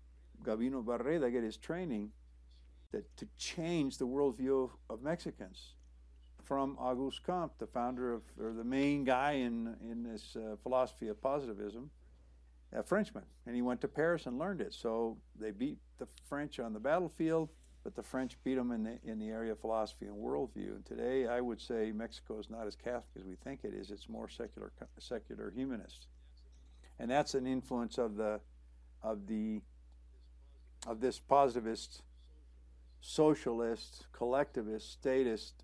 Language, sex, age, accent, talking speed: English, male, 60-79, American, 160 wpm